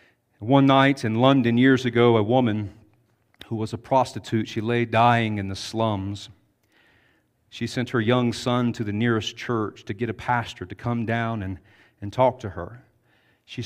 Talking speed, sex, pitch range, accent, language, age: 175 wpm, male, 115-140 Hz, American, English, 40-59